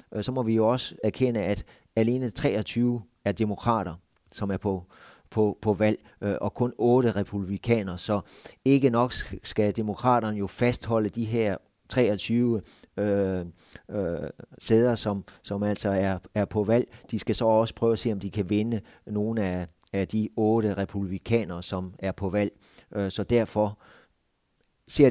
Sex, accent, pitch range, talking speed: male, native, 100-115 Hz, 155 wpm